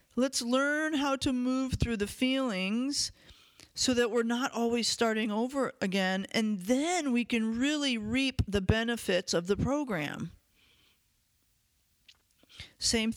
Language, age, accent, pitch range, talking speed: English, 40-59, American, 200-255 Hz, 130 wpm